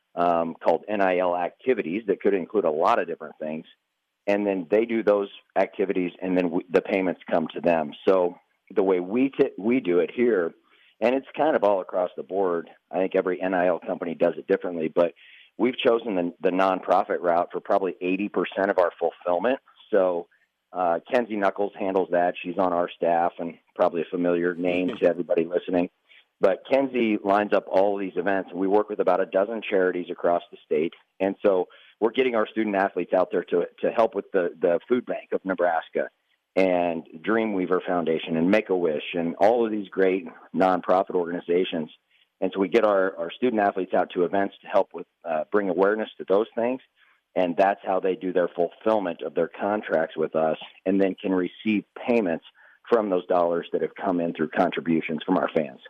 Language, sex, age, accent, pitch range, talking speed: English, male, 40-59, American, 90-105 Hz, 190 wpm